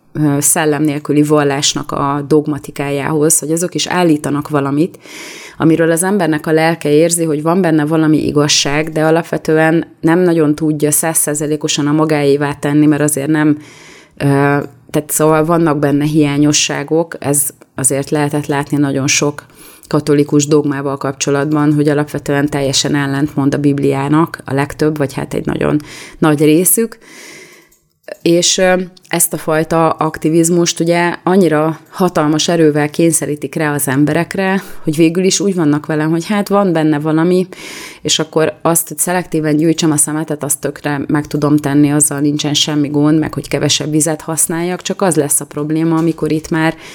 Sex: female